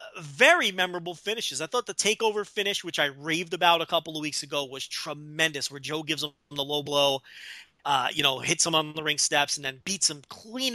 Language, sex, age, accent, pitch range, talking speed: English, male, 30-49, American, 165-255 Hz, 225 wpm